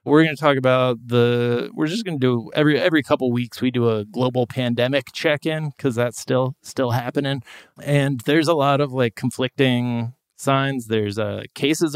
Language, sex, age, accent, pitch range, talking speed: English, male, 20-39, American, 110-145 Hz, 195 wpm